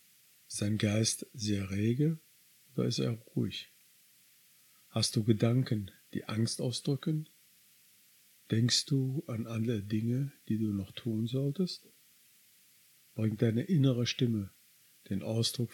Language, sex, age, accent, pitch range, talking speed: German, male, 50-69, German, 110-130 Hz, 115 wpm